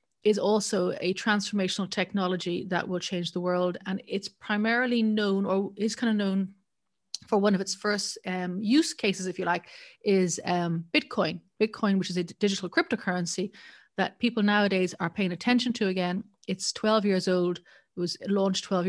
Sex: female